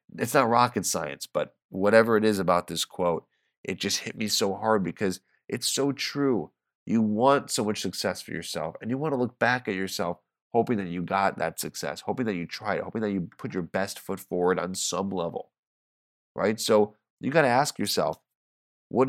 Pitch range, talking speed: 85-110 Hz, 210 wpm